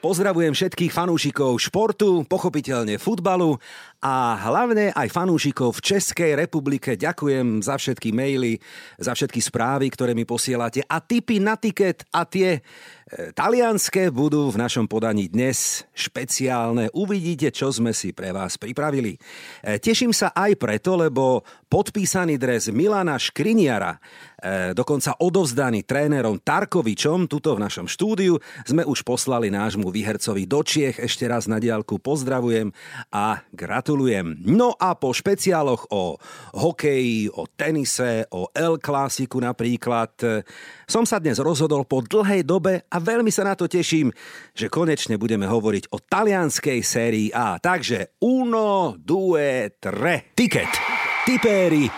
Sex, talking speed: male, 135 wpm